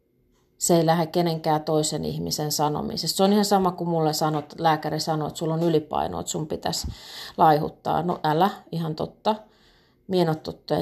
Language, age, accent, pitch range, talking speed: Finnish, 30-49, native, 155-195 Hz, 160 wpm